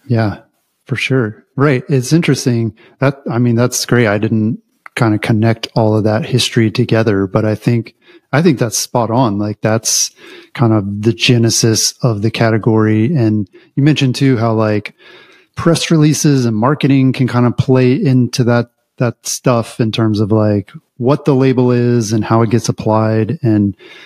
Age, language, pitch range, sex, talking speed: 30-49, English, 110-130 Hz, male, 175 wpm